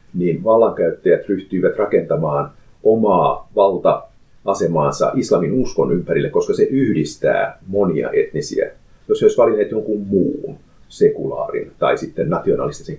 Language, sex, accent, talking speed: Finnish, male, native, 110 wpm